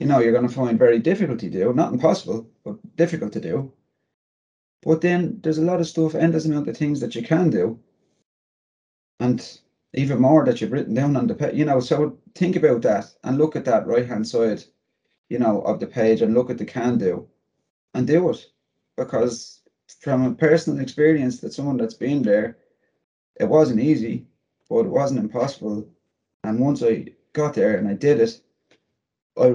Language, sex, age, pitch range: English, male, 30-49, 115-150 Hz